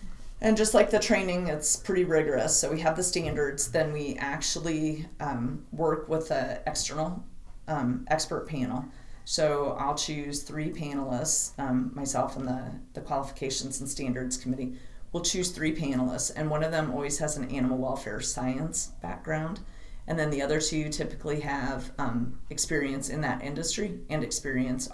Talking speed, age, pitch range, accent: 160 wpm, 30-49, 125-155 Hz, American